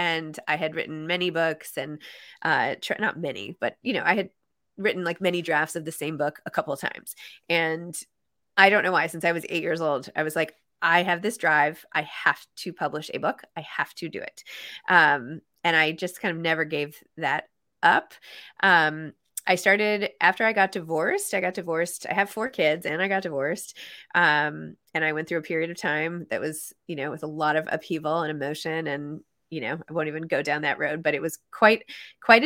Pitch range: 155-200 Hz